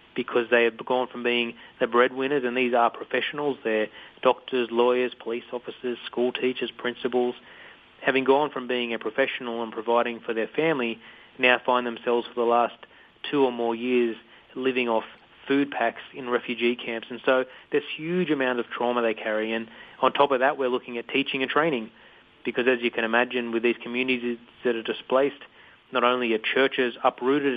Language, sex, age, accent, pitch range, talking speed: English, male, 30-49, Australian, 115-130 Hz, 185 wpm